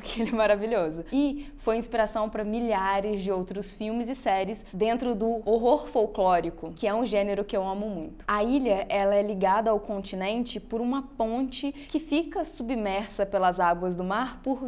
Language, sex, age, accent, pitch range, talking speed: Portuguese, female, 10-29, Brazilian, 200-270 Hz, 175 wpm